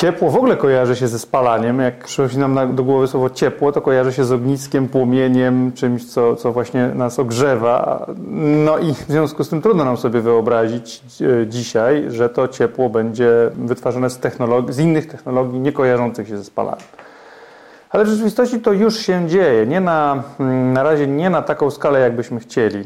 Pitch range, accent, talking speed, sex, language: 120-150 Hz, native, 180 wpm, male, Polish